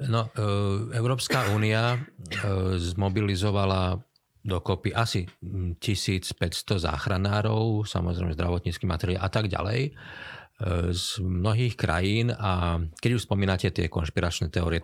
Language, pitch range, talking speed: Slovak, 85-105 Hz, 95 wpm